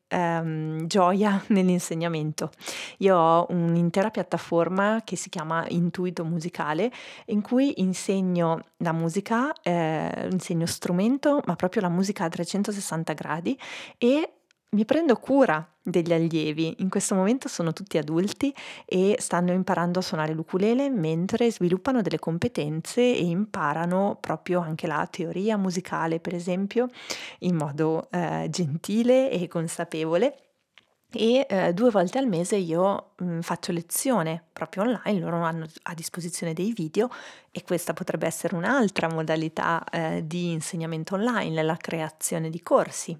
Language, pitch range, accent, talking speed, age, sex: Italian, 165-210 Hz, native, 130 wpm, 30-49, female